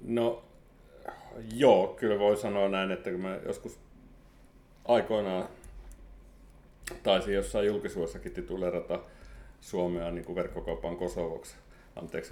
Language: Finnish